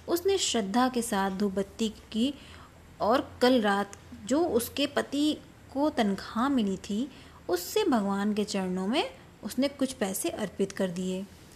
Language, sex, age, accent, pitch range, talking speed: Hindi, female, 20-39, native, 195-250 Hz, 140 wpm